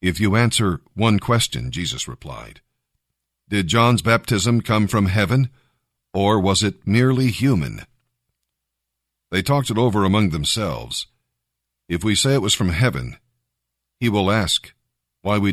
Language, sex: English, male